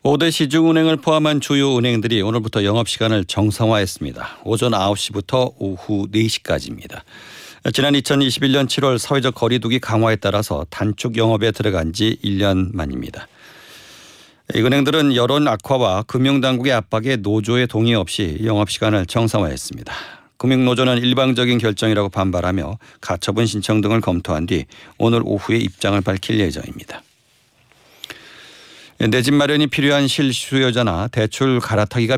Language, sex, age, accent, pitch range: Korean, male, 50-69, native, 100-130 Hz